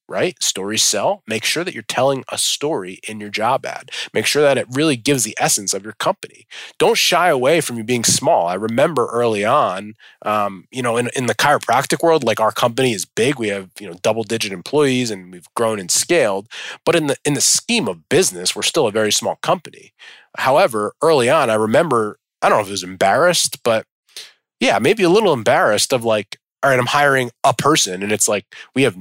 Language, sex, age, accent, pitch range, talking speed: English, male, 20-39, American, 105-140 Hz, 215 wpm